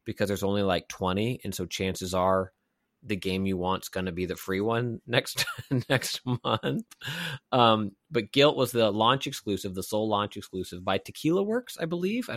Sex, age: male, 30-49